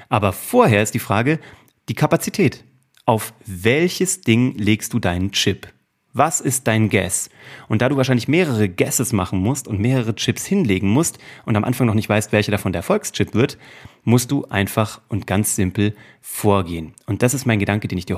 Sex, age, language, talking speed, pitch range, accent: male, 30-49, German, 190 wpm, 105-130 Hz, German